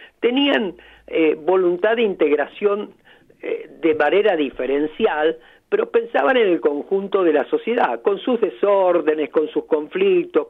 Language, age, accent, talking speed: Spanish, 50-69, Argentinian, 130 wpm